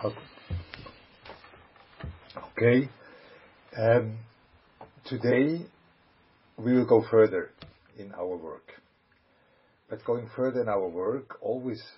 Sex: male